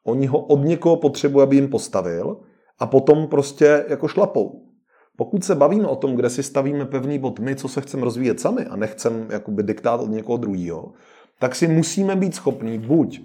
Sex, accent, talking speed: male, native, 185 wpm